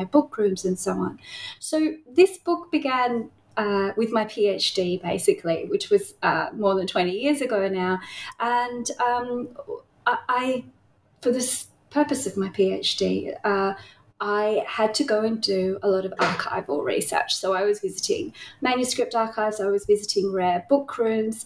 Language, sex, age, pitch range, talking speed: English, female, 30-49, 200-280 Hz, 155 wpm